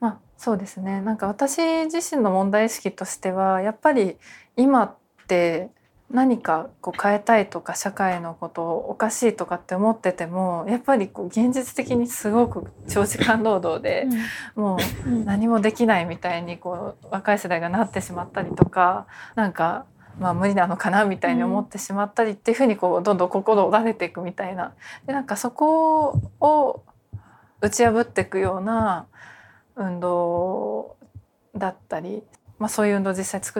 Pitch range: 180-240 Hz